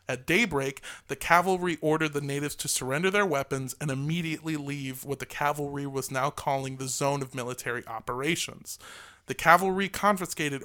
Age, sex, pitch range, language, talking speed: 30-49, male, 135-160 Hz, English, 160 wpm